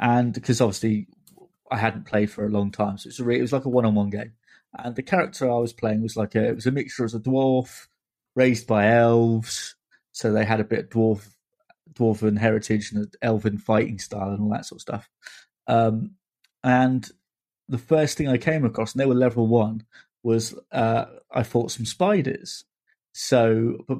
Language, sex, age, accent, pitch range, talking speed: English, male, 30-49, British, 110-130 Hz, 190 wpm